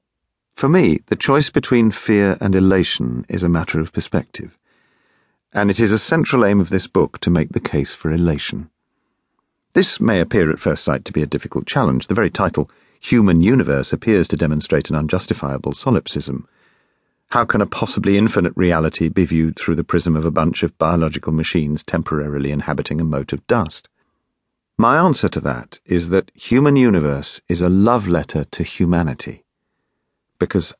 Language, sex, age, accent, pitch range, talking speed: English, male, 50-69, British, 80-100 Hz, 170 wpm